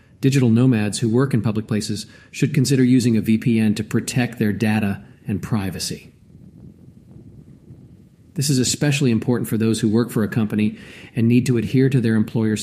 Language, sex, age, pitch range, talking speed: English, male, 40-59, 125-165 Hz, 170 wpm